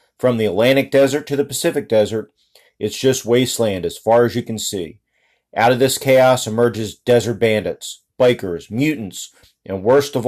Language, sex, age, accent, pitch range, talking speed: English, male, 40-59, American, 115-140 Hz, 170 wpm